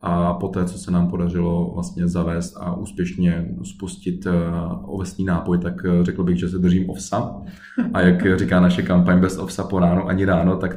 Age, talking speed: 20-39, 180 wpm